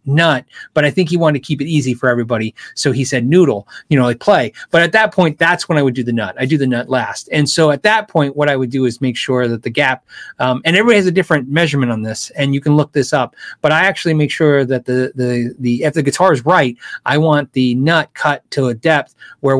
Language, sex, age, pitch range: English, male, 30-49, 130-185 Hz